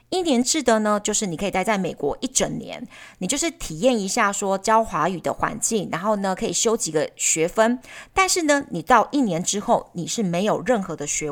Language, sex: Chinese, female